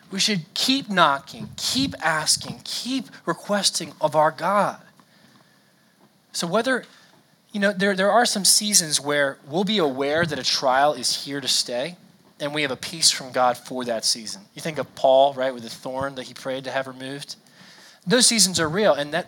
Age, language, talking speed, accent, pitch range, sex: 20-39, English, 190 wpm, American, 140-200 Hz, male